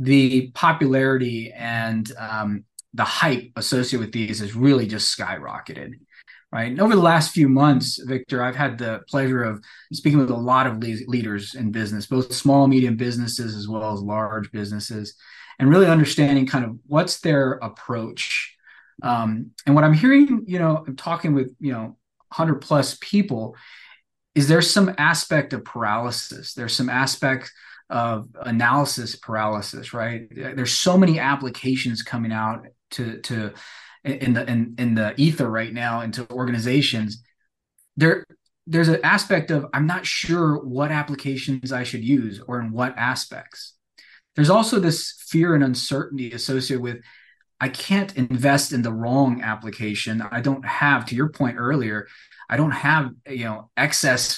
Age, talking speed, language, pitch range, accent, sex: 20-39, 155 wpm, English, 115-145 Hz, American, male